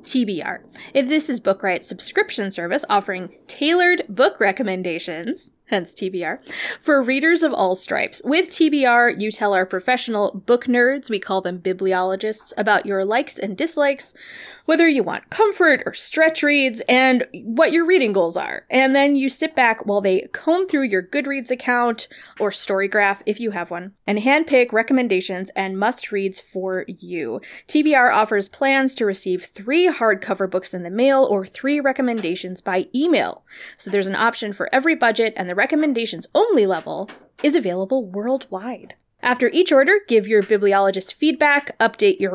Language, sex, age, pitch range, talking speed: English, female, 20-39, 200-290 Hz, 160 wpm